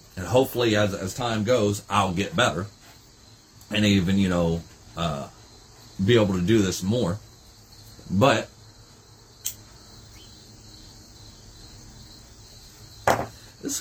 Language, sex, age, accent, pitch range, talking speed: English, male, 40-59, American, 105-120 Hz, 95 wpm